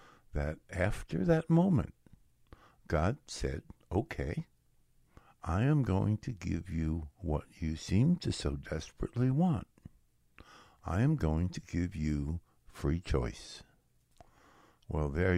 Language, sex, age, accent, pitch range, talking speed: English, male, 60-79, American, 80-125 Hz, 115 wpm